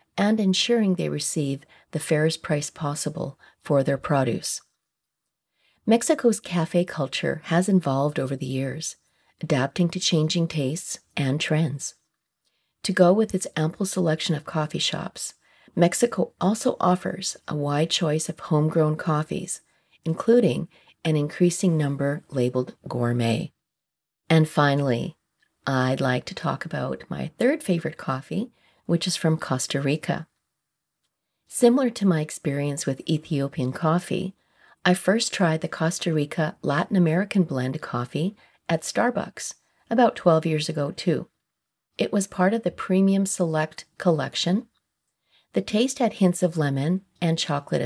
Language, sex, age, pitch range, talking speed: English, female, 40-59, 145-185 Hz, 130 wpm